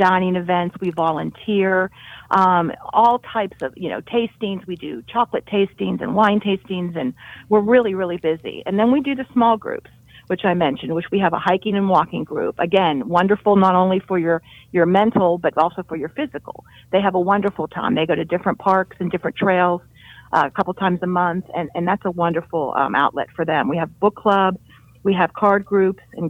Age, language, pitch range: 50-69, English, 165-200 Hz